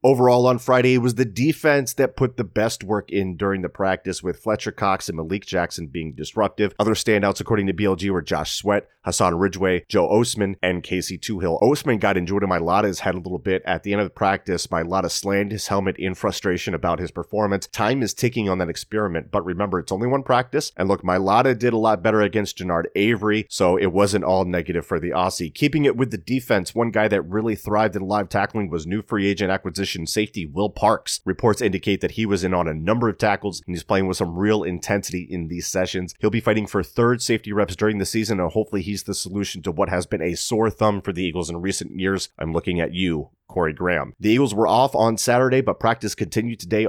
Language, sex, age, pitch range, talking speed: English, male, 30-49, 90-110 Hz, 230 wpm